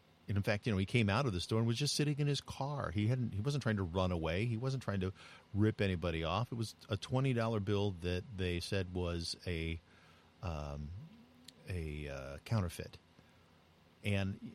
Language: English